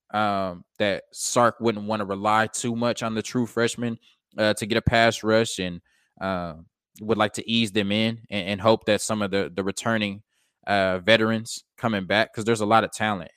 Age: 20-39